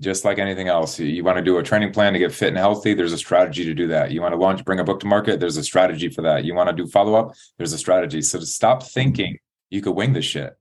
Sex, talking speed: male, 305 wpm